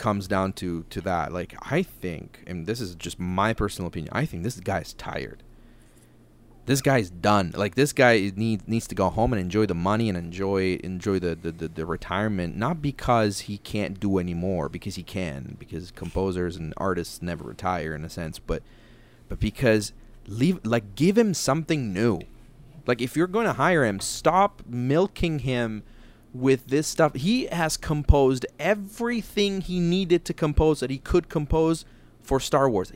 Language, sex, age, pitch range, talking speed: English, male, 30-49, 100-140 Hz, 180 wpm